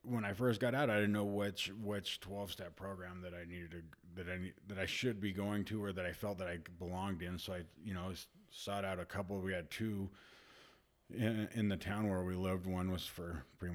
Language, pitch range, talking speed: English, 85-105 Hz, 240 wpm